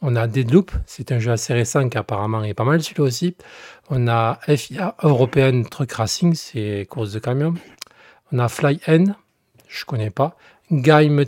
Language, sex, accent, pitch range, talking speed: French, male, French, 120-155 Hz, 175 wpm